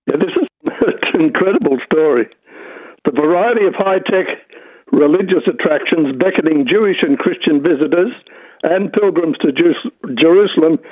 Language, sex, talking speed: English, male, 110 wpm